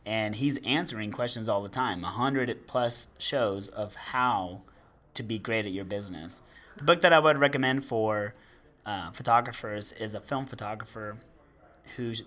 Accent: American